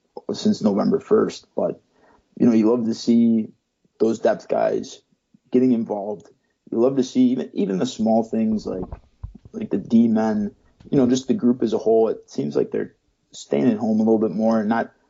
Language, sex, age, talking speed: English, male, 20-39, 200 wpm